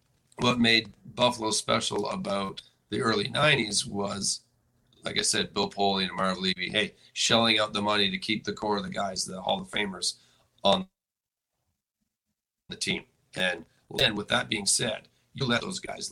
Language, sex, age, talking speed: English, male, 40-59, 170 wpm